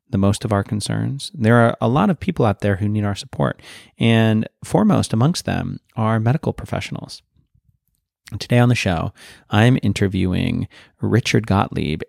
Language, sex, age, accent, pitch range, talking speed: English, male, 30-49, American, 100-125 Hz, 160 wpm